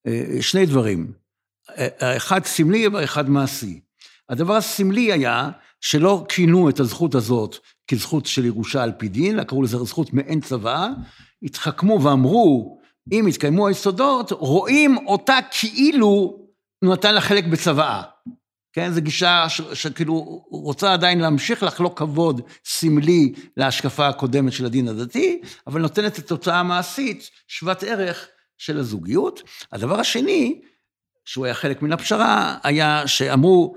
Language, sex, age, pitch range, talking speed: Hebrew, male, 60-79, 130-185 Hz, 130 wpm